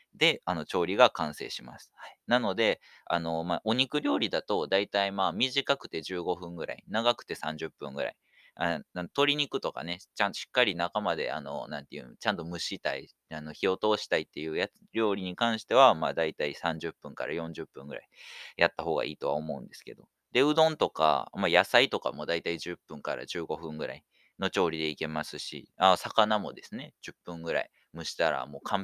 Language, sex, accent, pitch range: Japanese, male, native, 80-115 Hz